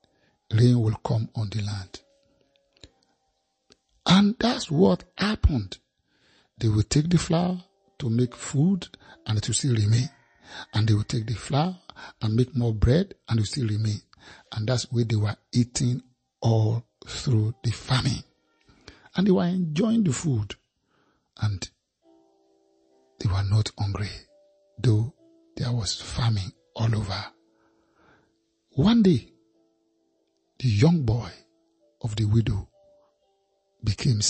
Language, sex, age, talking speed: English, male, 60-79, 130 wpm